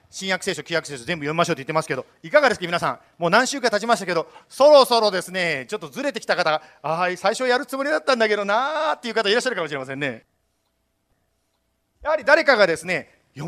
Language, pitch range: Japanese, 200-285 Hz